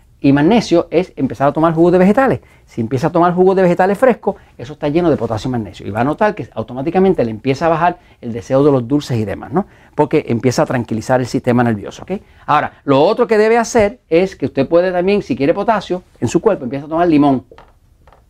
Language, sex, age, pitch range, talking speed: Spanish, male, 40-59, 130-195 Hz, 235 wpm